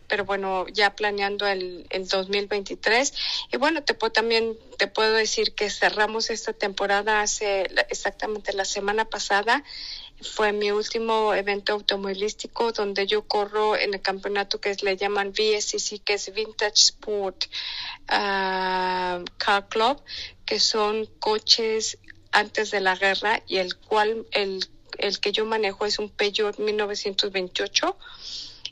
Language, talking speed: Spanish, 140 wpm